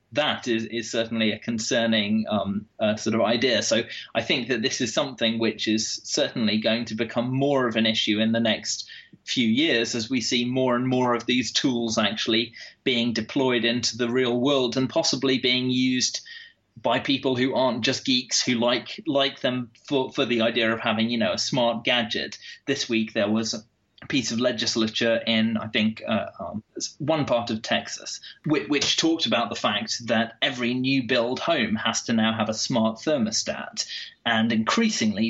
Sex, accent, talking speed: male, British, 190 wpm